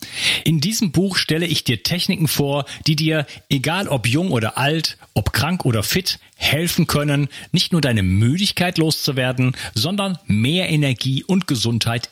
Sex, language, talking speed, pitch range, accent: male, German, 155 wpm, 110-155 Hz, German